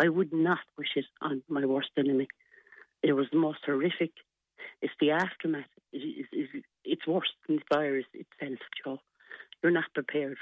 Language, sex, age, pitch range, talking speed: English, female, 60-79, 145-175 Hz, 165 wpm